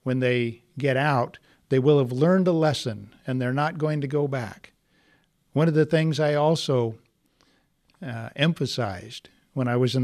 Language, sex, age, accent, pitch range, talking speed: English, male, 60-79, American, 120-150 Hz, 175 wpm